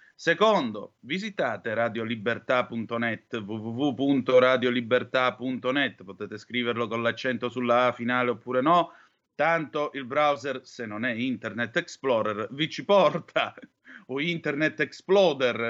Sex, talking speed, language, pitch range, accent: male, 105 wpm, Italian, 120-165 Hz, native